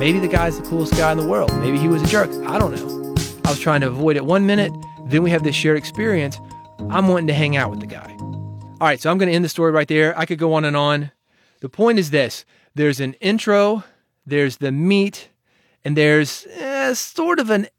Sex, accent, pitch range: male, American, 130-165 Hz